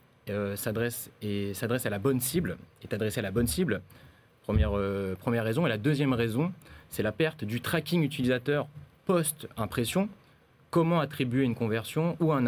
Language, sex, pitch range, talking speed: French, male, 105-140 Hz, 175 wpm